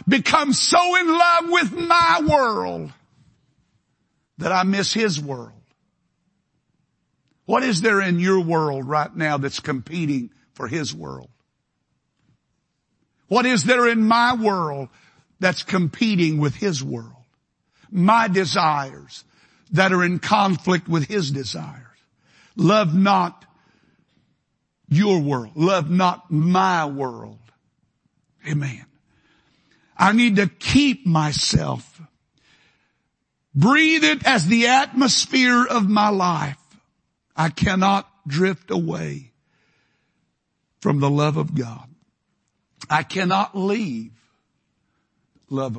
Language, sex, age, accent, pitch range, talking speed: English, male, 60-79, American, 150-200 Hz, 105 wpm